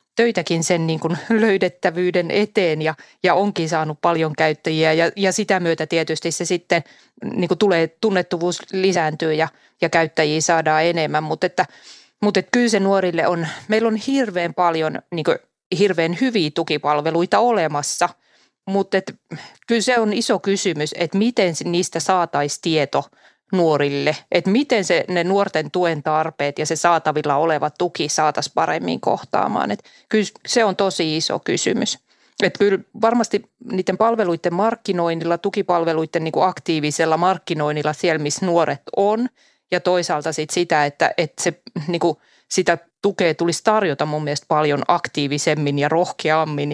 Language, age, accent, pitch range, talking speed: Finnish, 30-49, native, 160-195 Hz, 130 wpm